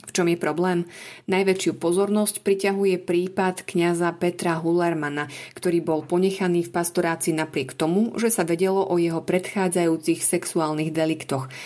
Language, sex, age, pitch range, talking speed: Slovak, female, 30-49, 160-190 Hz, 135 wpm